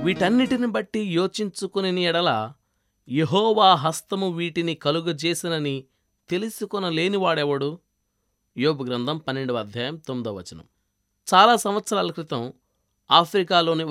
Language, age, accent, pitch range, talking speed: Telugu, 20-39, native, 120-195 Hz, 75 wpm